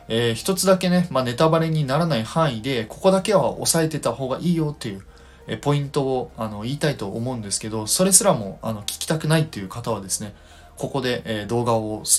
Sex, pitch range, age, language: male, 100-145 Hz, 20-39, Japanese